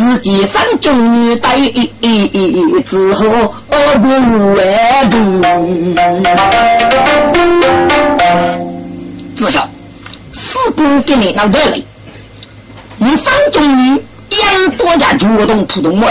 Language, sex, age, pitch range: Chinese, female, 40-59, 170-285 Hz